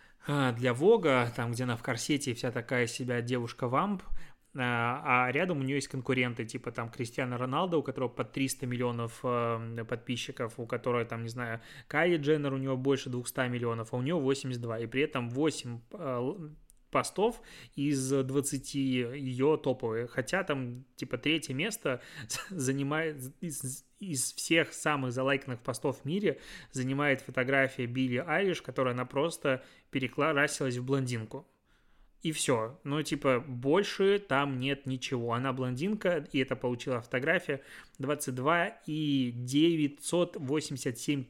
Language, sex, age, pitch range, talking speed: Russian, male, 20-39, 125-150 Hz, 135 wpm